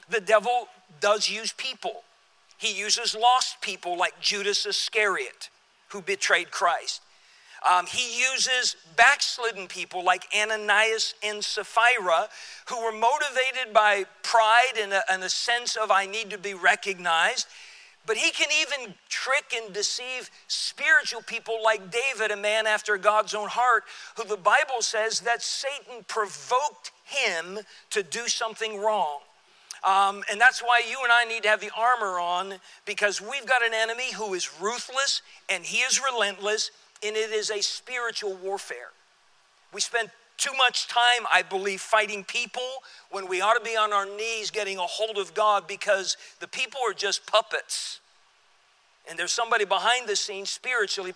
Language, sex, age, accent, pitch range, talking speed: English, male, 50-69, American, 200-235 Hz, 155 wpm